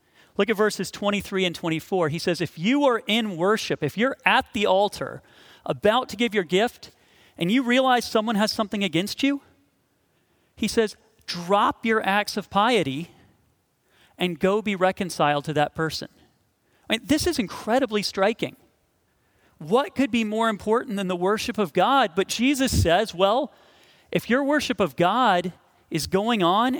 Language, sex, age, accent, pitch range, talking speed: English, male, 40-59, American, 175-230 Hz, 165 wpm